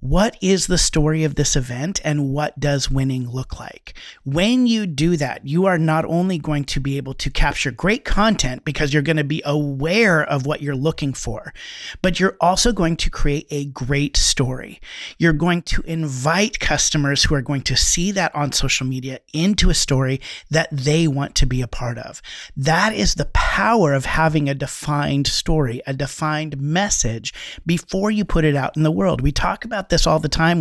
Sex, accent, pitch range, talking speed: male, American, 140-170 Hz, 200 wpm